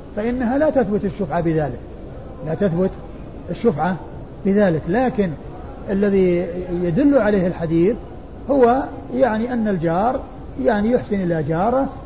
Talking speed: 110 wpm